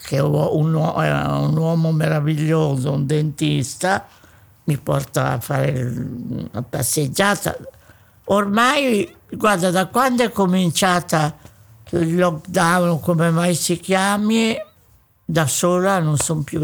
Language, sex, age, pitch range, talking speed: Italian, male, 60-79, 145-195 Hz, 110 wpm